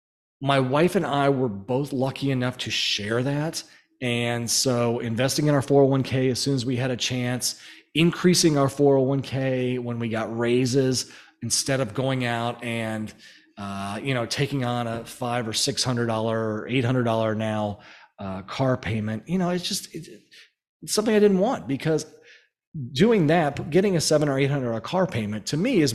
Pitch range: 120-150 Hz